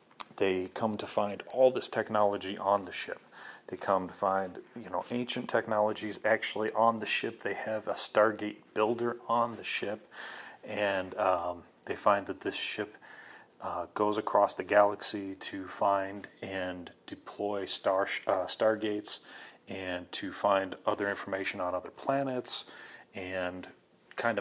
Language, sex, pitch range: English, male, 95-110 Hz